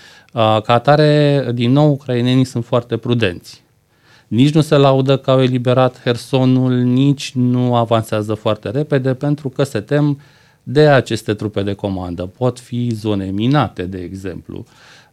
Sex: male